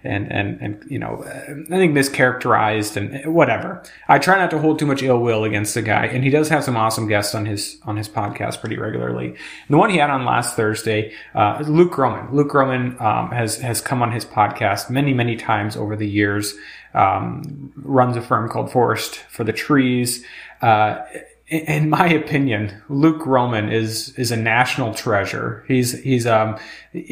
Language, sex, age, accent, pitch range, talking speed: English, male, 30-49, American, 110-145 Hz, 190 wpm